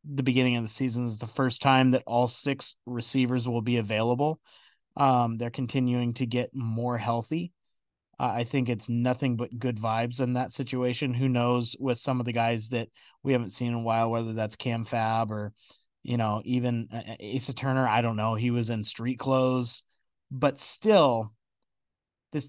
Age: 20-39